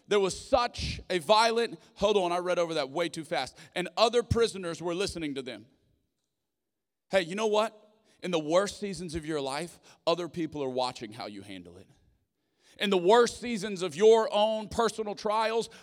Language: English